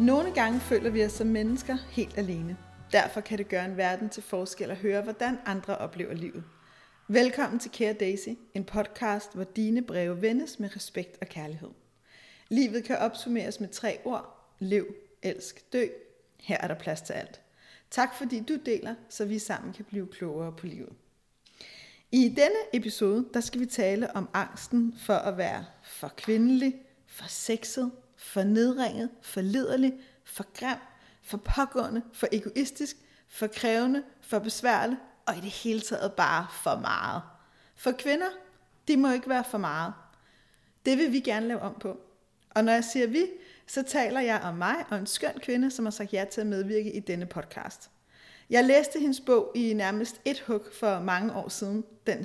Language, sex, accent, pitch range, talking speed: Danish, female, native, 200-250 Hz, 175 wpm